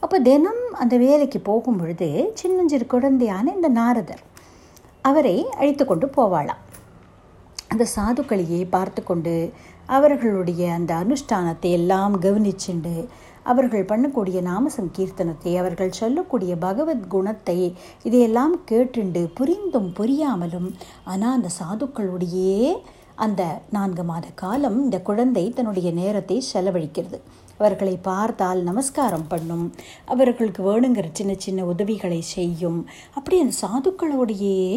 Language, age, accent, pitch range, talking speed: Tamil, 60-79, native, 185-265 Hz, 100 wpm